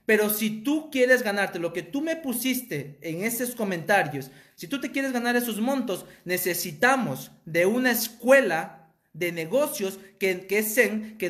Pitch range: 205-270 Hz